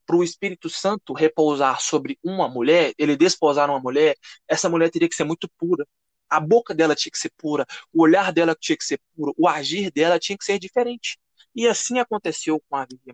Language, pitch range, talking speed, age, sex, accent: Portuguese, 150-205 Hz, 210 wpm, 20-39, male, Brazilian